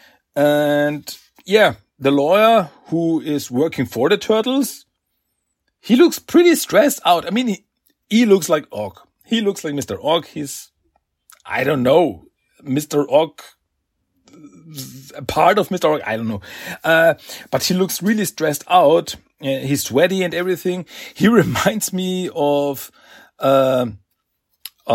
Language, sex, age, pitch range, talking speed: German, male, 40-59, 125-190 Hz, 135 wpm